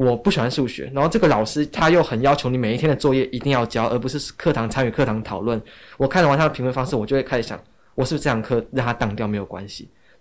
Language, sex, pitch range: Chinese, male, 110-145 Hz